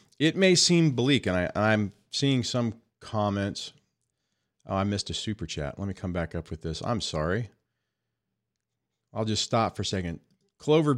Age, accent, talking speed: 40-59, American, 170 wpm